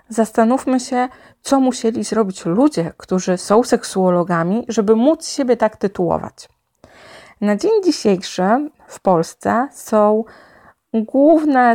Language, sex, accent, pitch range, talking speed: Polish, female, native, 185-245 Hz, 105 wpm